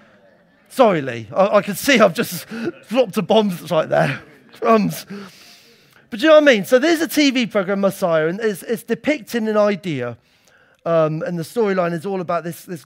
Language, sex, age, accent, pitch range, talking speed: English, male, 40-59, British, 160-235 Hz, 195 wpm